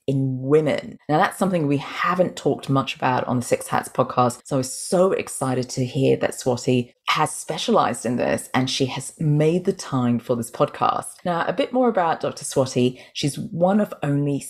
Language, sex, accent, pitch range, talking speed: English, female, British, 125-145 Hz, 200 wpm